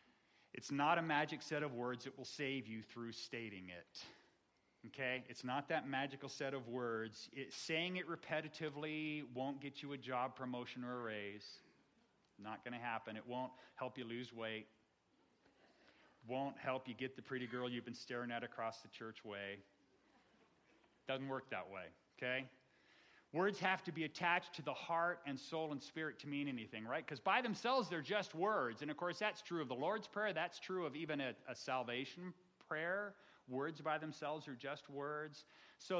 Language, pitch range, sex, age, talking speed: English, 125-165 Hz, male, 40-59, 185 wpm